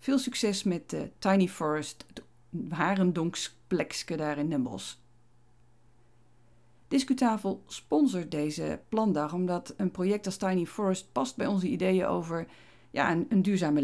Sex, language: female, Dutch